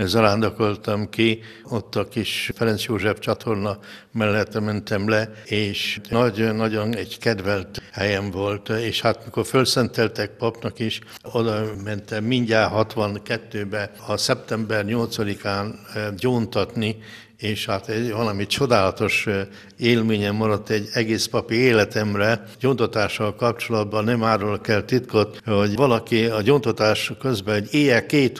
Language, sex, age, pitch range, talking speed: Hungarian, male, 60-79, 105-120 Hz, 120 wpm